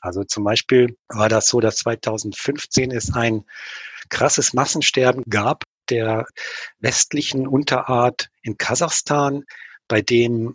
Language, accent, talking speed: German, German, 115 wpm